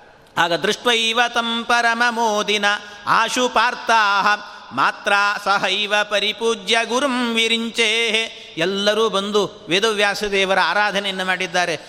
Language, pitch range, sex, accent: Kannada, 175-215 Hz, male, native